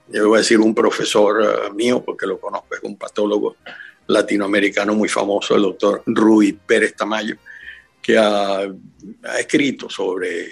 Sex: male